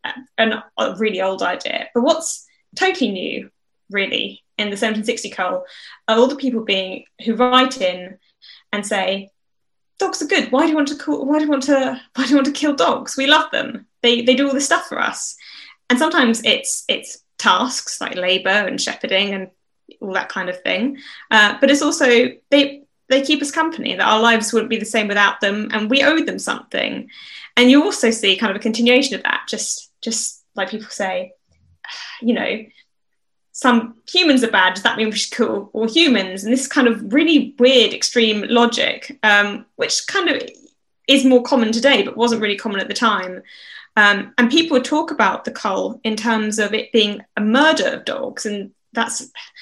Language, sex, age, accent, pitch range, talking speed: English, female, 10-29, British, 210-275 Hz, 200 wpm